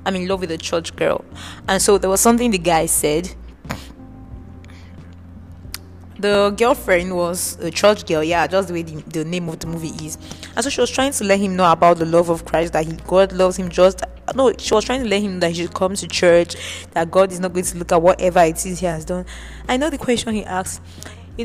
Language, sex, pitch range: English, female, 165-205 Hz